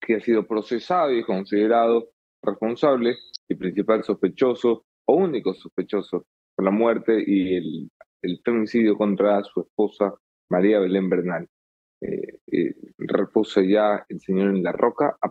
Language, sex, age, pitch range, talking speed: English, male, 20-39, 100-125 Hz, 140 wpm